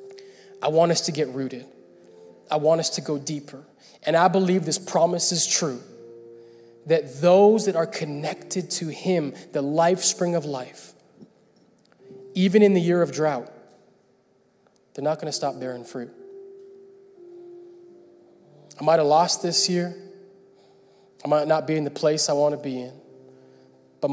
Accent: American